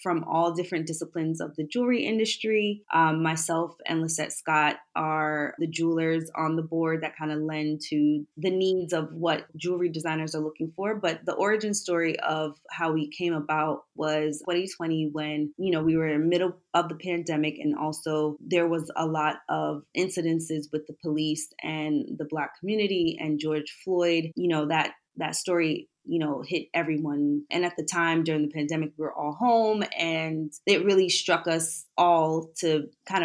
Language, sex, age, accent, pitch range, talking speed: English, female, 20-39, American, 155-170 Hz, 180 wpm